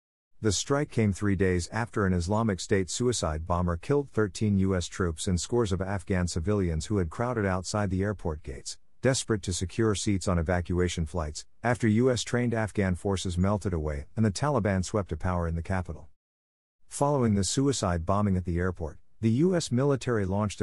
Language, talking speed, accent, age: English, 175 wpm, American, 50-69